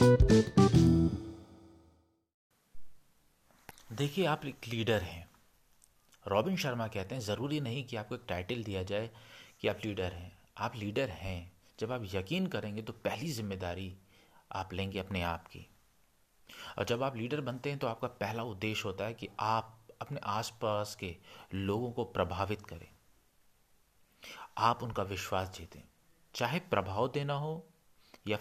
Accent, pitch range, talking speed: native, 95-120 Hz, 140 wpm